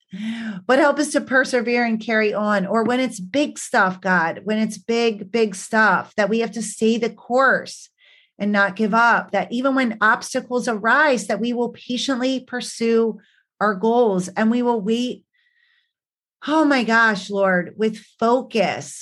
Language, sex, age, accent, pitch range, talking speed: English, female, 30-49, American, 190-240 Hz, 165 wpm